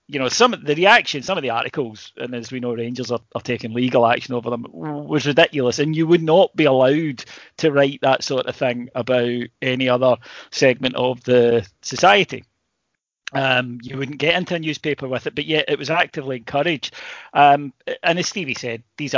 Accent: British